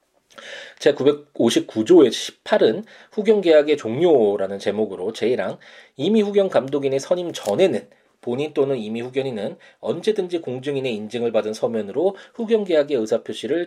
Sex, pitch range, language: male, 135-210 Hz, Korean